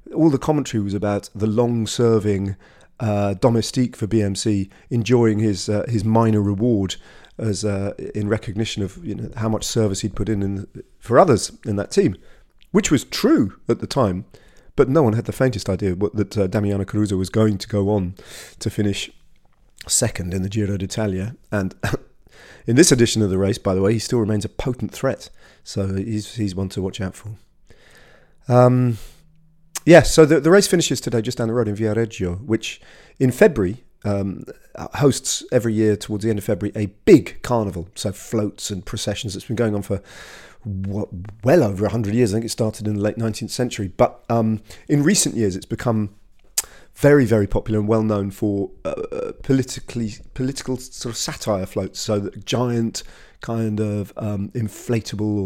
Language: English